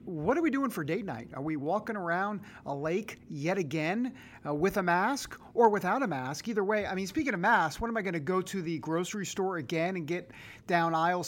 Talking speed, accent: 240 wpm, American